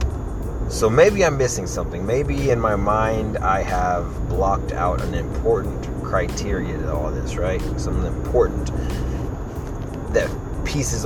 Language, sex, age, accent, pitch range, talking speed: English, male, 30-49, American, 85-105 Hz, 130 wpm